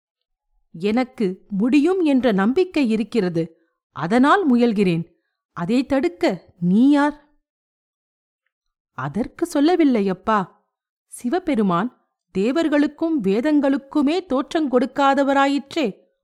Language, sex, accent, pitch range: Tamil, female, native, 200-300 Hz